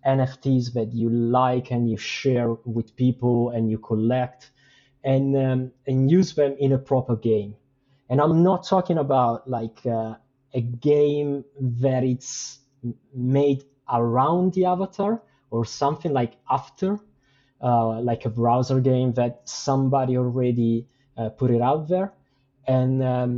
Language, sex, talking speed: English, male, 140 wpm